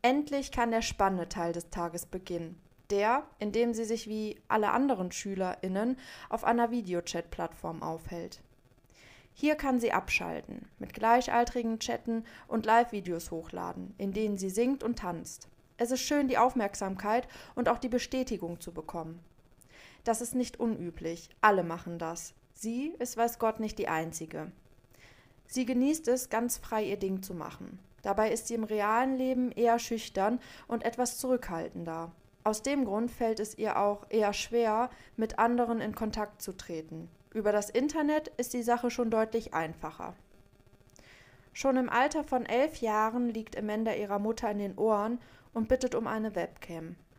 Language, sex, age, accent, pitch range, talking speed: English, female, 20-39, German, 175-235 Hz, 160 wpm